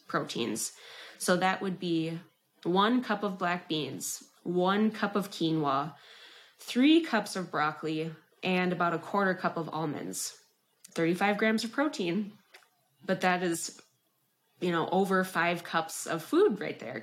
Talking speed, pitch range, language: 145 wpm, 165-210 Hz, English